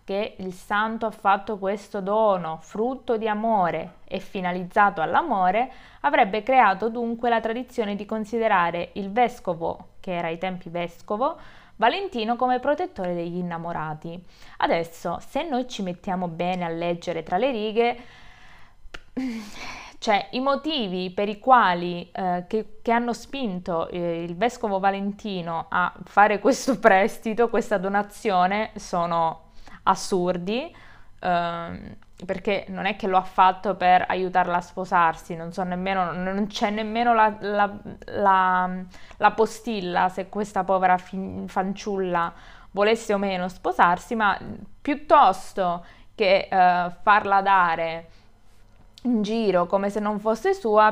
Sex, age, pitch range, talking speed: female, 20-39, 180-220 Hz, 130 wpm